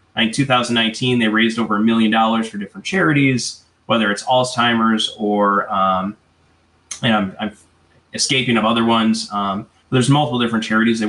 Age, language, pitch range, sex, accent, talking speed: 20-39, English, 110-135 Hz, male, American, 160 wpm